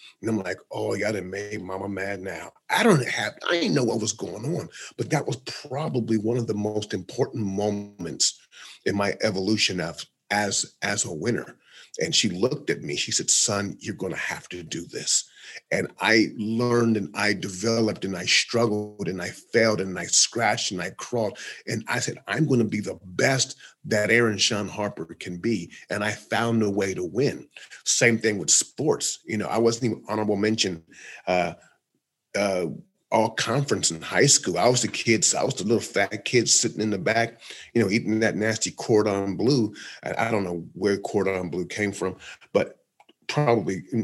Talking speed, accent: 190 wpm, American